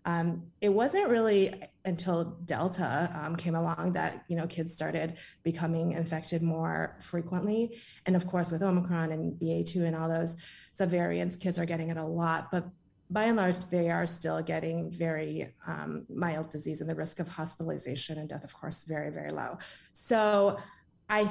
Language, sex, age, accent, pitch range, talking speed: English, female, 30-49, American, 165-180 Hz, 170 wpm